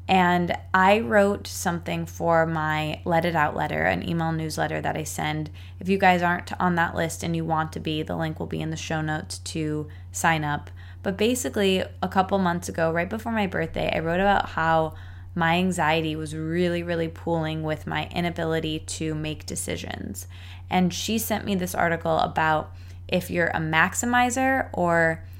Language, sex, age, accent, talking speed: English, female, 20-39, American, 180 wpm